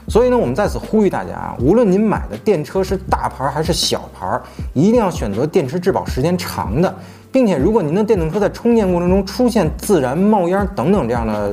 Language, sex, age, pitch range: Chinese, male, 30-49, 135-210 Hz